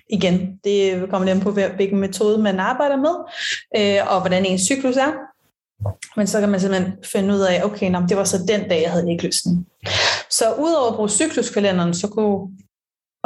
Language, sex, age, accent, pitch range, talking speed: Danish, female, 30-49, native, 190-225 Hz, 190 wpm